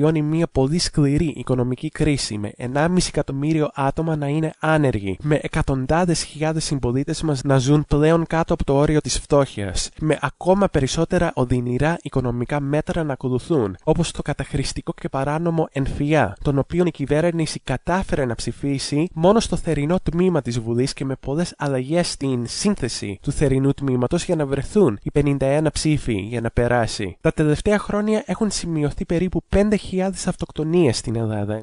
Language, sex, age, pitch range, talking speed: English, male, 20-39, 125-170 Hz, 155 wpm